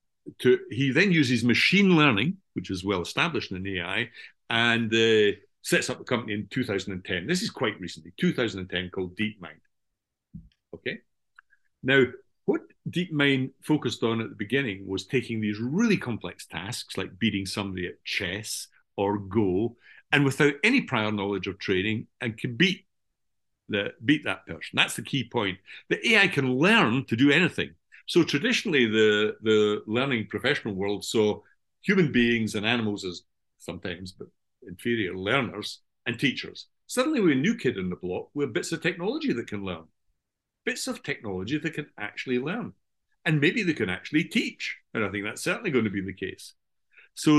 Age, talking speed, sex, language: 50-69, 170 wpm, male, English